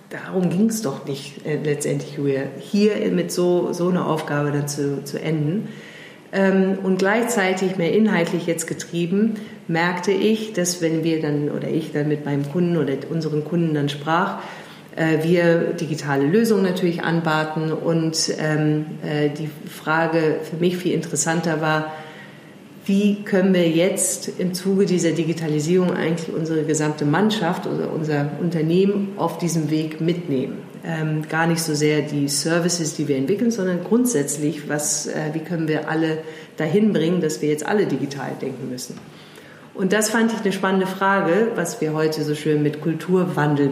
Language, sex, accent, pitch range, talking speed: German, female, German, 150-185 Hz, 160 wpm